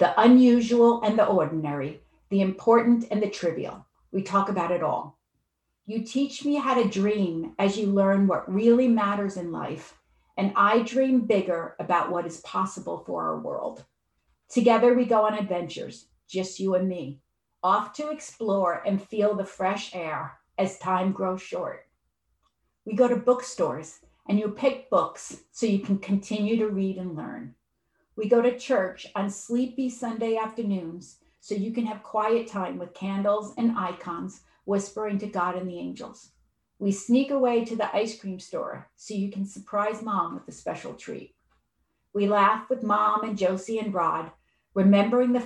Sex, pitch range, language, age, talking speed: female, 190-235 Hz, English, 50-69, 170 wpm